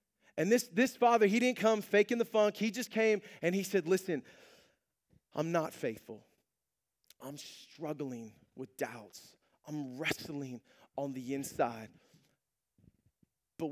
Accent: American